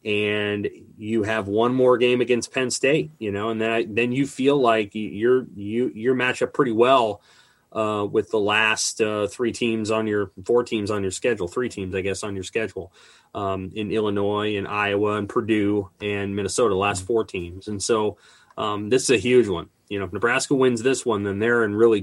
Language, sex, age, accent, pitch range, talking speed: English, male, 30-49, American, 100-120 Hz, 205 wpm